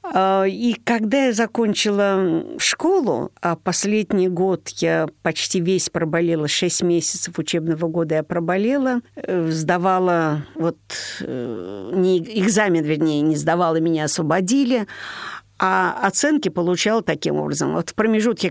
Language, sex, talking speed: Russian, female, 115 wpm